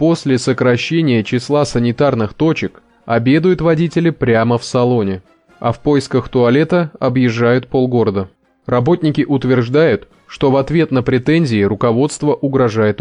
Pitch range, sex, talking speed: 120-160 Hz, male, 115 wpm